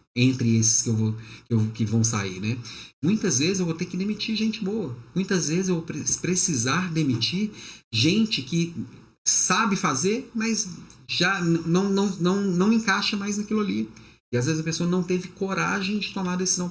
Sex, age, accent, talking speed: male, 40-59, Brazilian, 175 wpm